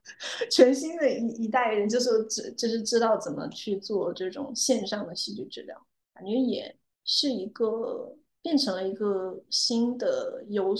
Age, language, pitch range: 20-39, Chinese, 205-260 Hz